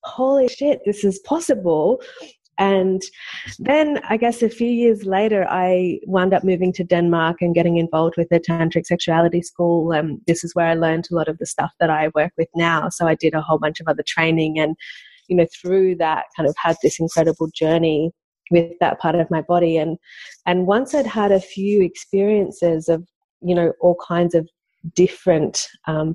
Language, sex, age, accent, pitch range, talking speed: English, female, 30-49, Australian, 165-205 Hz, 195 wpm